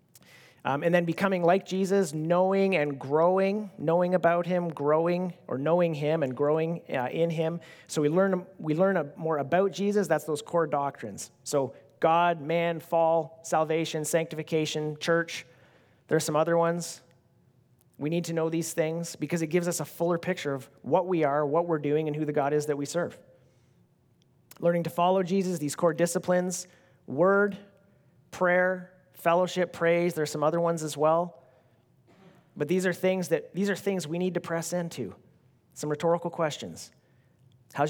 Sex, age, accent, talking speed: male, 30-49, American, 170 wpm